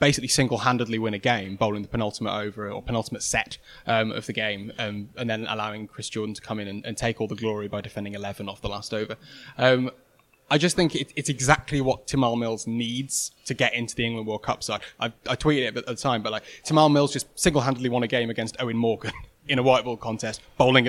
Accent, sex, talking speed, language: British, male, 235 wpm, English